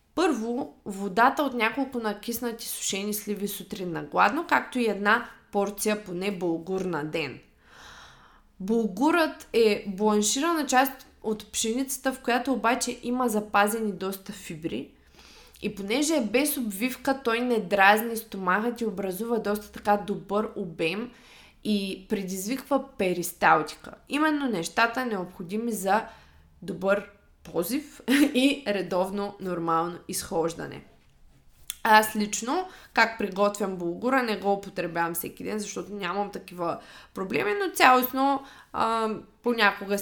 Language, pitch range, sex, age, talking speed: Bulgarian, 195-245 Hz, female, 20-39, 115 wpm